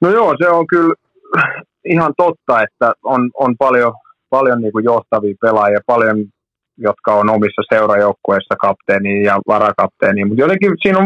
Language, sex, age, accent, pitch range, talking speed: Finnish, male, 30-49, native, 105-135 Hz, 140 wpm